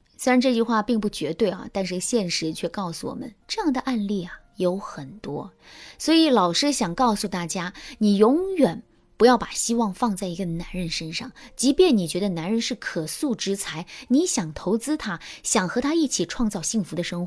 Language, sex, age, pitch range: Chinese, female, 20-39, 180-260 Hz